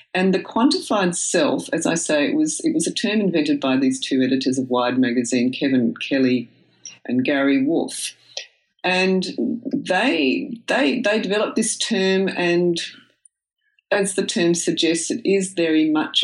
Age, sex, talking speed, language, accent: 50-69, female, 155 wpm, English, Australian